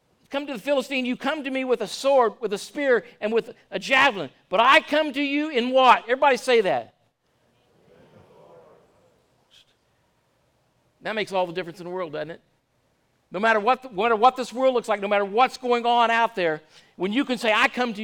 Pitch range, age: 195-265 Hz, 50-69